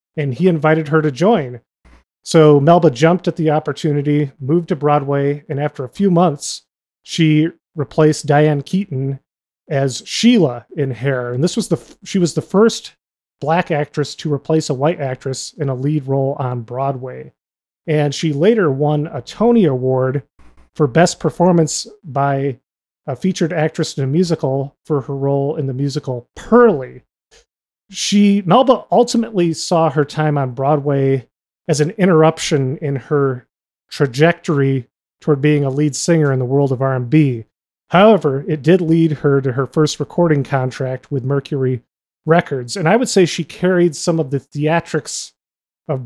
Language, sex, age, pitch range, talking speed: English, male, 30-49, 135-170 Hz, 160 wpm